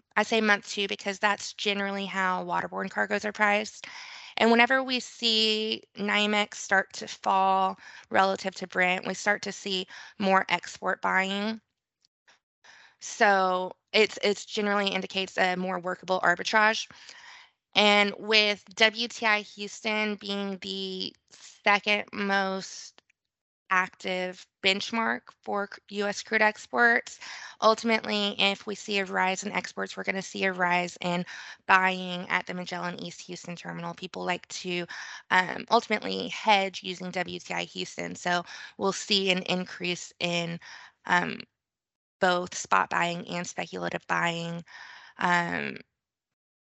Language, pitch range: English, 180-210 Hz